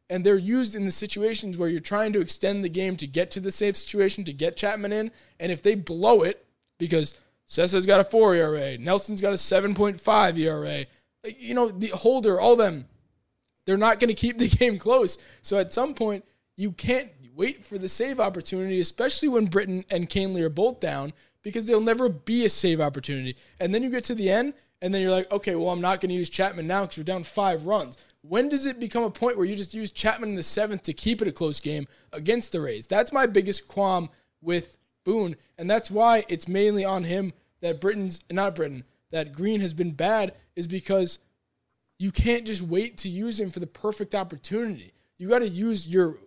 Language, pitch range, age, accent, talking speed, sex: English, 175-220 Hz, 20-39, American, 220 wpm, male